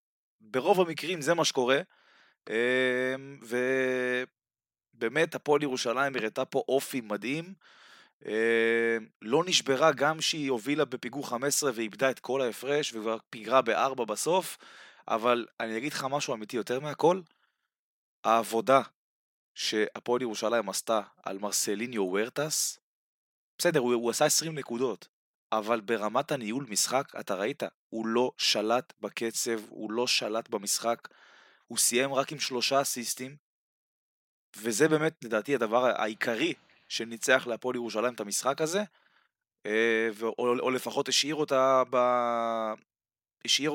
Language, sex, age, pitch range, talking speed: Hebrew, male, 20-39, 115-140 Hz, 115 wpm